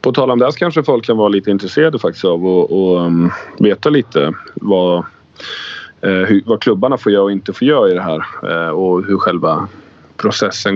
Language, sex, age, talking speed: English, male, 30-49, 215 wpm